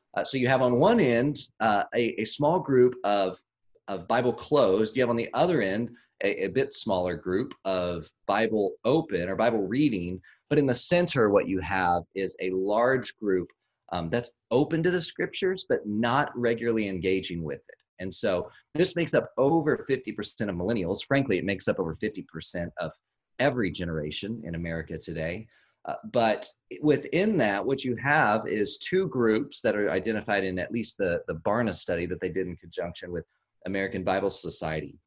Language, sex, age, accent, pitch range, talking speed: English, male, 30-49, American, 95-130 Hz, 180 wpm